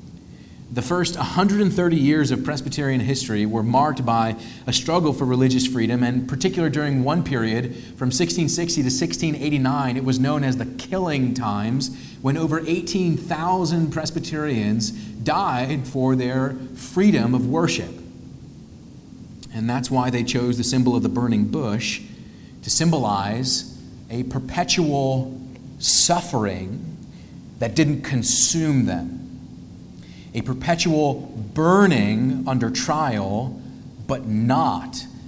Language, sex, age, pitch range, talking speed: English, male, 40-59, 115-150 Hz, 115 wpm